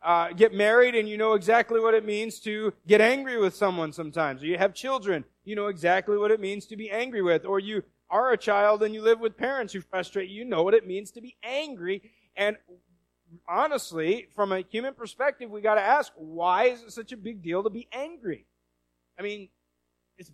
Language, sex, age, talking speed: English, male, 40-59, 220 wpm